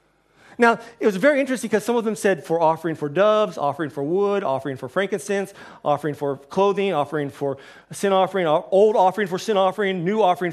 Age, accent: 40-59, American